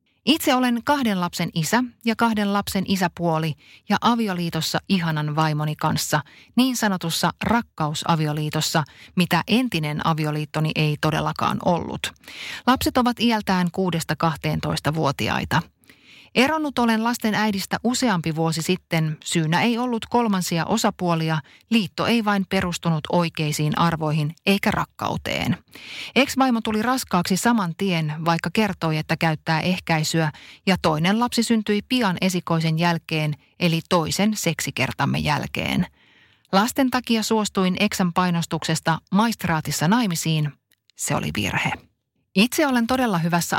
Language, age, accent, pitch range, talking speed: Finnish, 30-49, native, 160-220 Hz, 115 wpm